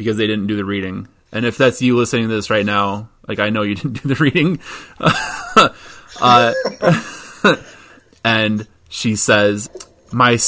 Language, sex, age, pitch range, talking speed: English, male, 20-39, 105-150 Hz, 160 wpm